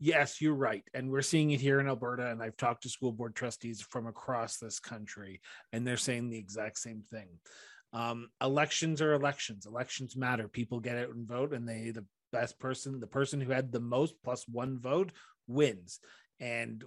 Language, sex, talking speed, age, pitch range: English, male, 195 wpm, 30-49, 115-135 Hz